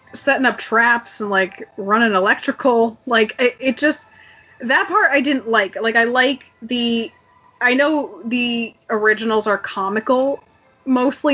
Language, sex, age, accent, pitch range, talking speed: English, female, 20-39, American, 205-265 Hz, 145 wpm